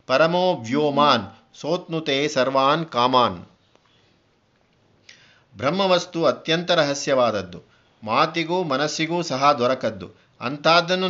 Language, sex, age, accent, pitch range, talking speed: Kannada, male, 50-69, native, 130-170 Hz, 65 wpm